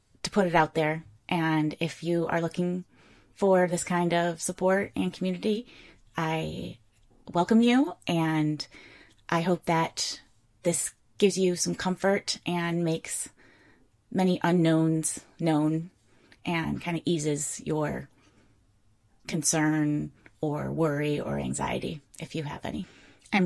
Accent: American